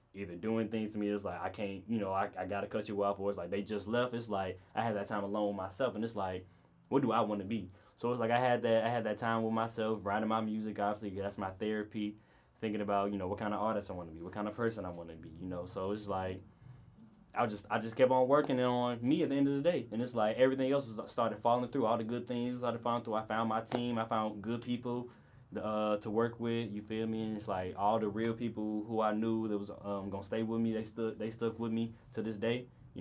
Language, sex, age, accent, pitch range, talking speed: English, male, 10-29, American, 105-120 Hz, 280 wpm